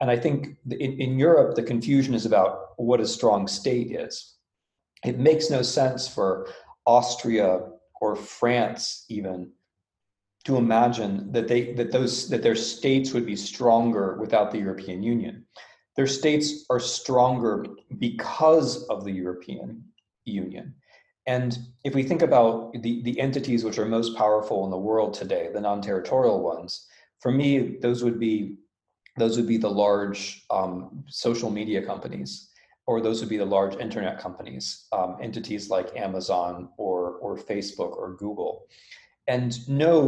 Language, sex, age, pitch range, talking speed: English, male, 40-59, 105-135 Hz, 150 wpm